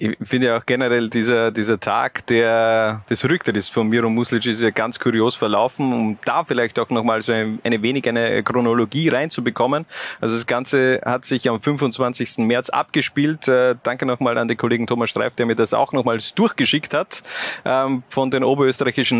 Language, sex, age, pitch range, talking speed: German, male, 30-49, 120-135 Hz, 190 wpm